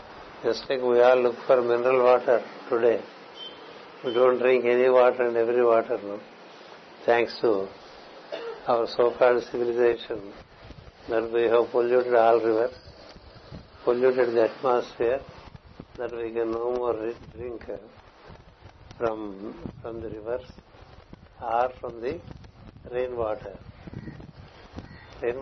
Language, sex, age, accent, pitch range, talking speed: Telugu, male, 60-79, native, 115-130 Hz, 120 wpm